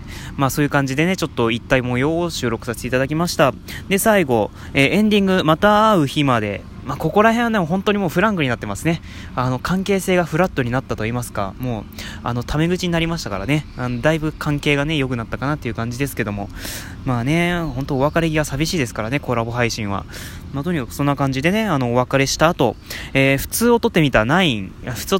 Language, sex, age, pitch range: Japanese, male, 20-39, 115-170 Hz